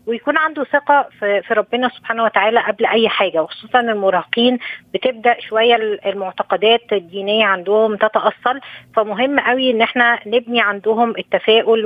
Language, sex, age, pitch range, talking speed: Arabic, female, 20-39, 210-240 Hz, 125 wpm